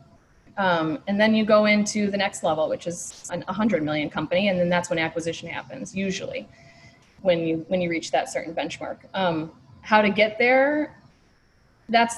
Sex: female